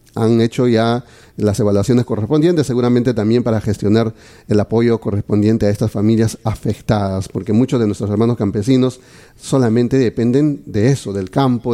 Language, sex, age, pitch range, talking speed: Spanish, male, 40-59, 105-125 Hz, 150 wpm